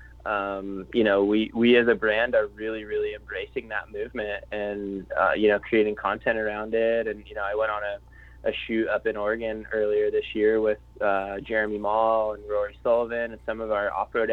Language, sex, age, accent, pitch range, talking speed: English, male, 20-39, American, 105-120 Hz, 205 wpm